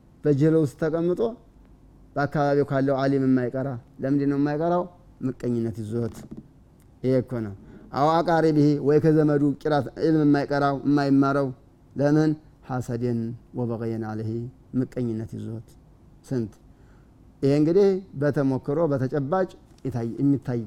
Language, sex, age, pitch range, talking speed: Amharic, male, 30-49, 125-145 Hz, 105 wpm